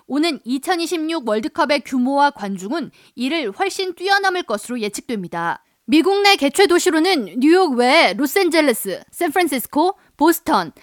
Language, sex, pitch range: Korean, female, 255-355 Hz